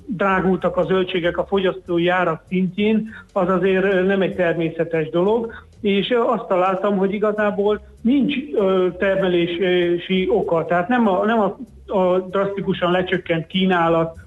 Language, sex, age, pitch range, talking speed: Hungarian, male, 40-59, 170-200 Hz, 120 wpm